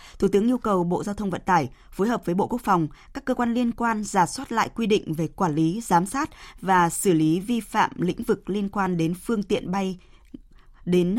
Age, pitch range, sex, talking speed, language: 20-39, 175-215 Hz, female, 235 wpm, Vietnamese